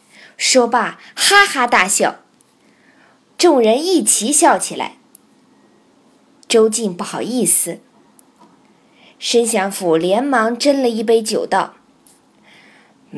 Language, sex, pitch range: Chinese, female, 210-290 Hz